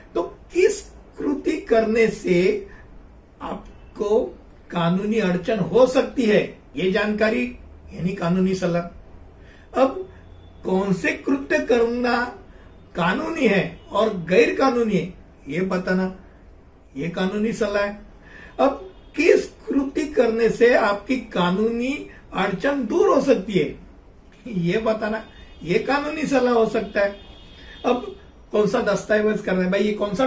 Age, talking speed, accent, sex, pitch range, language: 60-79, 125 wpm, native, male, 180-240 Hz, Hindi